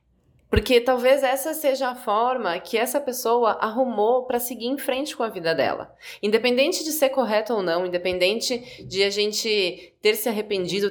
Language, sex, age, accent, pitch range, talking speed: Portuguese, female, 20-39, Brazilian, 195-270 Hz, 170 wpm